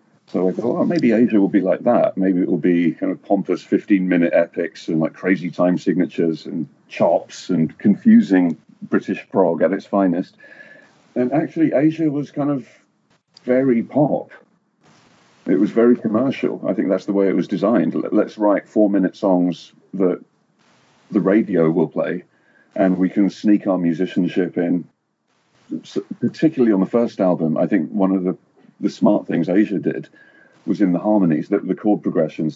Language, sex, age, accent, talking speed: Finnish, male, 40-59, British, 175 wpm